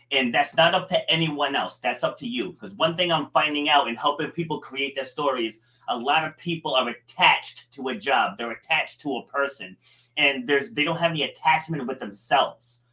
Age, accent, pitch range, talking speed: 30-49, American, 120-165 Hz, 215 wpm